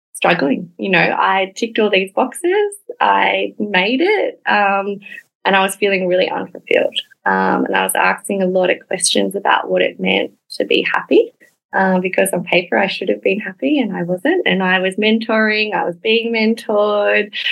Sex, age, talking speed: female, 20-39, 185 wpm